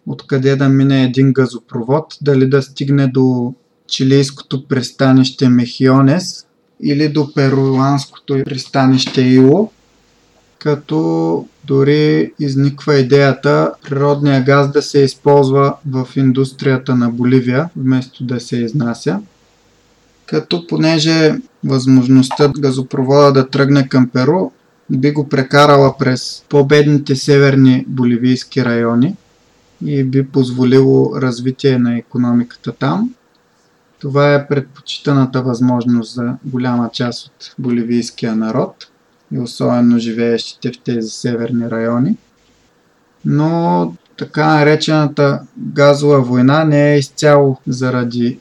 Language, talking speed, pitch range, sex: Bulgarian, 105 wpm, 125-145 Hz, male